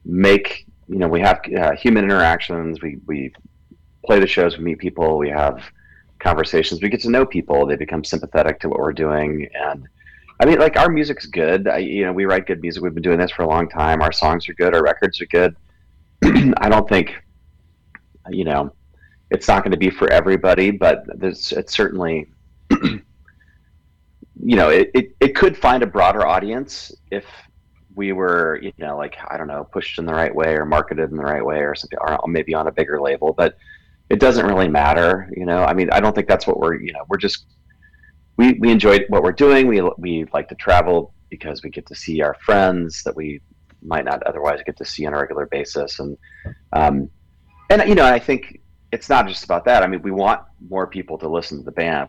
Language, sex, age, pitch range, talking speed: English, male, 30-49, 75-95 Hz, 215 wpm